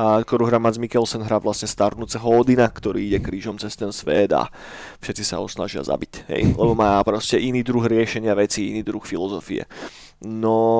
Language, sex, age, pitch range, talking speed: Slovak, male, 20-39, 110-135 Hz, 170 wpm